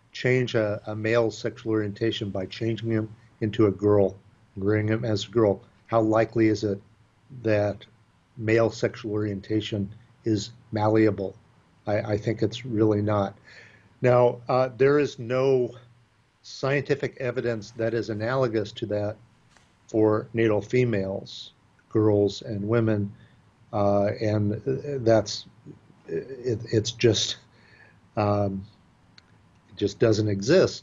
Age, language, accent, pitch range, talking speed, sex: 50-69, English, American, 105-120 Hz, 115 wpm, male